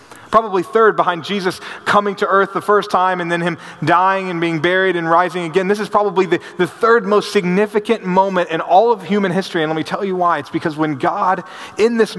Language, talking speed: English, 225 wpm